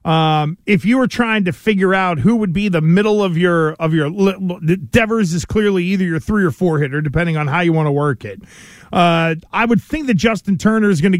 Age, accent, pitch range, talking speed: 40-59, American, 170-215 Hz, 235 wpm